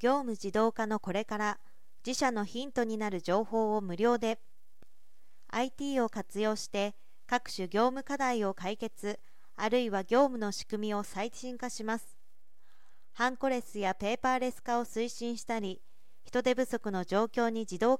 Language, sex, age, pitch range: Japanese, female, 40-59, 205-255 Hz